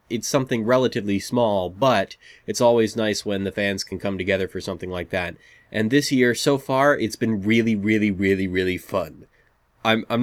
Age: 20-39